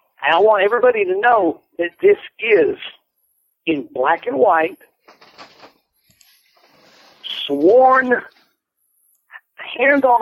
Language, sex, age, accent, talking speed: English, male, 50-69, American, 95 wpm